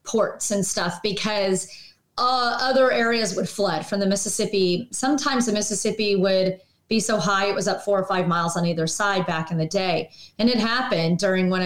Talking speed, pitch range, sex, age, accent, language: 195 wpm, 185-225 Hz, female, 30-49, American, English